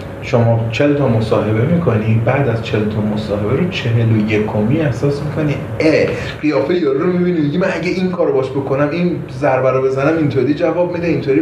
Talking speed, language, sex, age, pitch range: 175 wpm, Persian, male, 30-49, 125-160 Hz